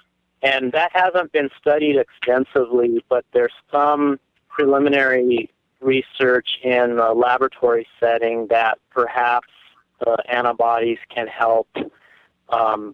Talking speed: 100 wpm